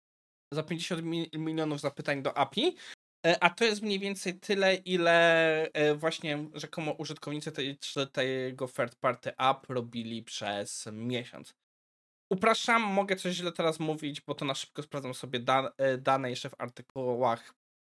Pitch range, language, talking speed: 130-170 Hz, Polish, 140 wpm